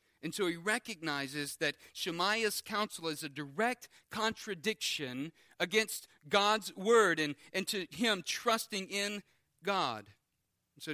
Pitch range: 140-200 Hz